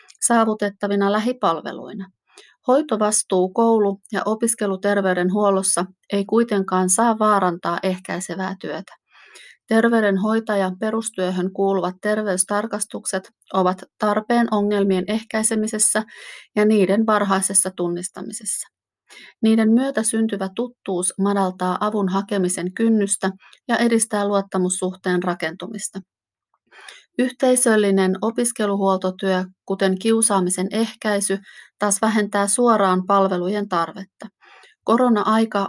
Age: 30-49